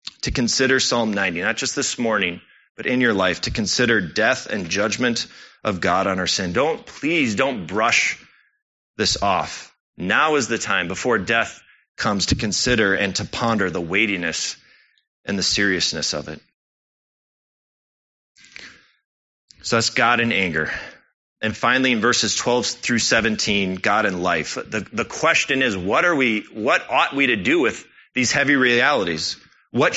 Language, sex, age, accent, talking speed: English, male, 30-49, American, 160 wpm